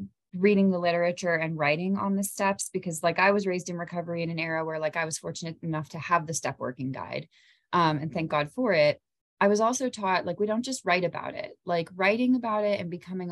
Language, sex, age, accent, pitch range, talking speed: English, female, 20-39, American, 165-195 Hz, 240 wpm